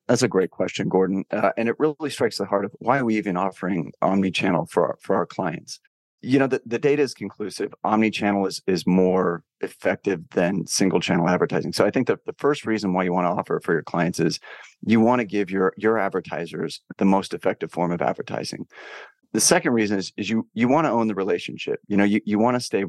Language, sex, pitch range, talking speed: English, male, 95-115 Hz, 235 wpm